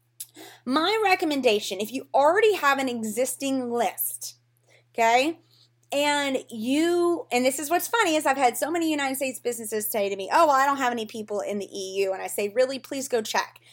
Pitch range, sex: 215-280 Hz, female